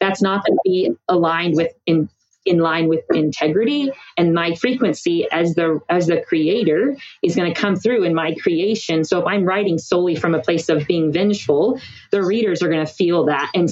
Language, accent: English, American